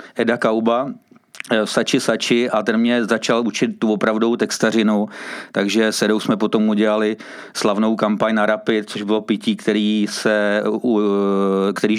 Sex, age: male, 40-59